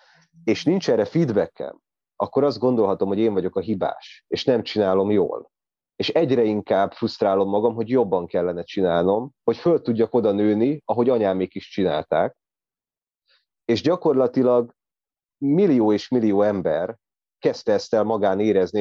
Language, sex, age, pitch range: Hungarian, male, 30-49, 95-130 Hz